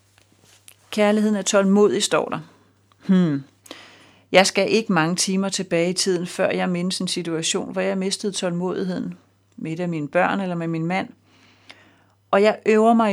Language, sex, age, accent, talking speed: Danish, female, 40-59, native, 150 wpm